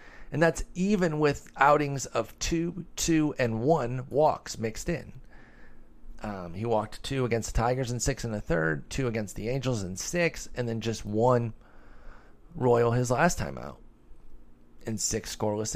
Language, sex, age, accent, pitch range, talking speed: English, male, 30-49, American, 100-130 Hz, 165 wpm